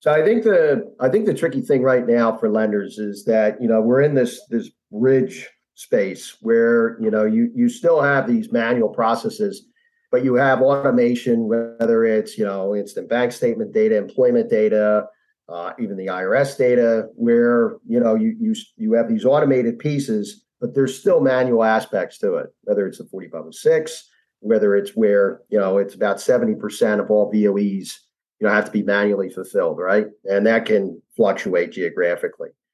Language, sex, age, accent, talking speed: English, male, 40-59, American, 185 wpm